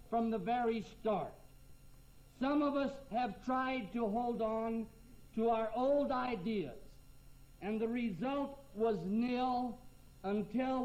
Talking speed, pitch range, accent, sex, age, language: 120 wpm, 210-255 Hz, American, male, 60-79, English